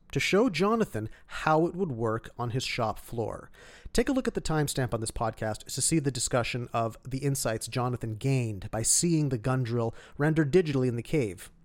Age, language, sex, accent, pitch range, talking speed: 30-49, English, male, American, 115-165 Hz, 200 wpm